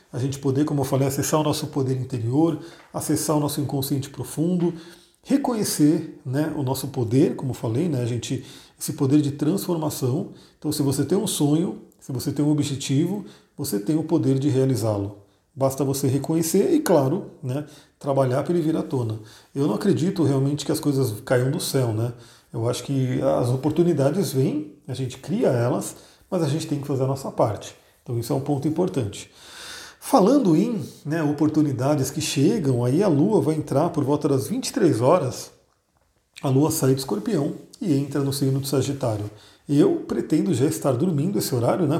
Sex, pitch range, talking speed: male, 130-155 Hz, 185 wpm